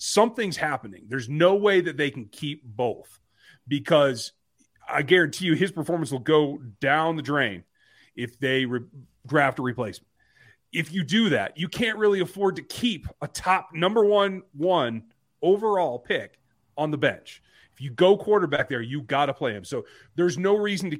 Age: 30-49